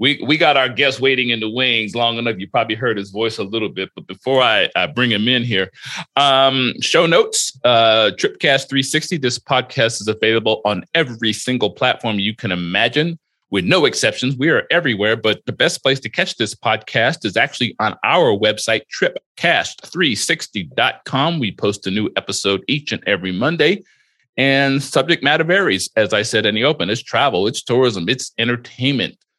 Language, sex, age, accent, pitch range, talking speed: English, male, 40-59, American, 105-135 Hz, 180 wpm